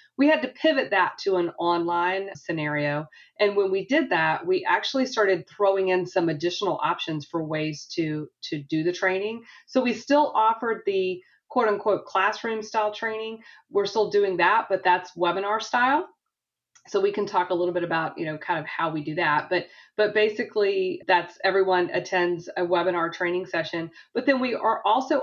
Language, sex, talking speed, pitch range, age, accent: English, female, 180 wpm, 160-195 Hz, 30-49, American